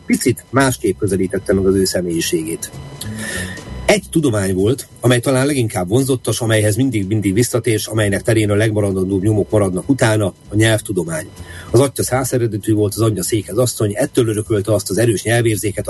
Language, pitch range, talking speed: Hungarian, 100-125 Hz, 155 wpm